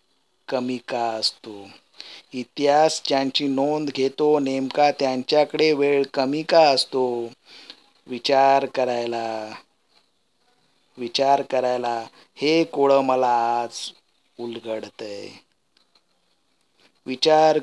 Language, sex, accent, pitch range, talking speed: Marathi, male, native, 120-140 Hz, 75 wpm